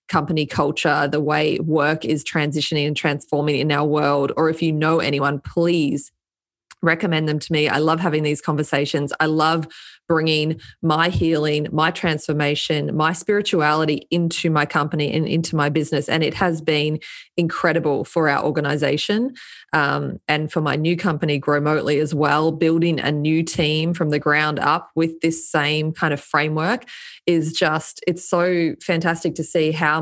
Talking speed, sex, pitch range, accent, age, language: 165 wpm, female, 150-170 Hz, Australian, 20-39, English